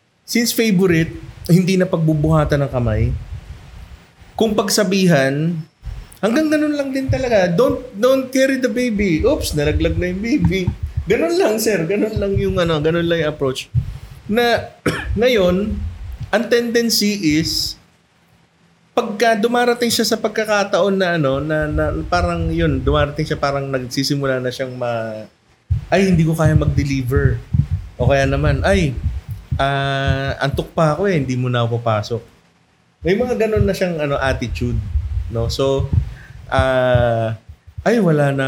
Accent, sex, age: native, male, 30-49